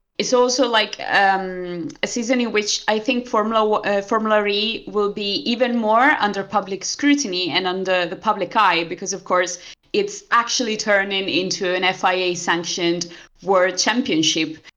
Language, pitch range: English, 185-235 Hz